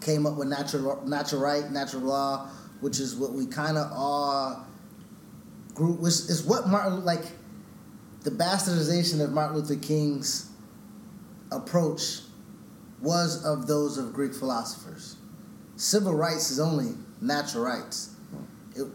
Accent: American